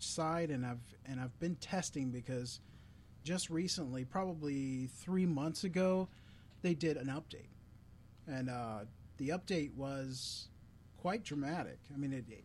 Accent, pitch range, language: American, 115-160 Hz, English